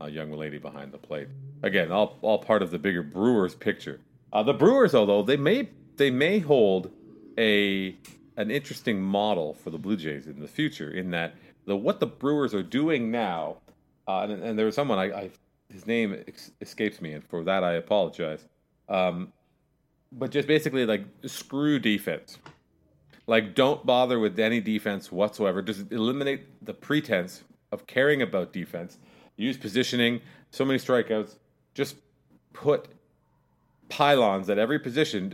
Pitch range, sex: 95-135 Hz, male